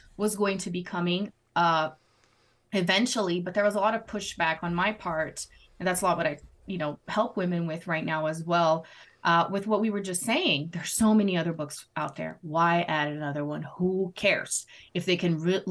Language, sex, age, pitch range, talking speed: English, female, 20-39, 165-210 Hz, 215 wpm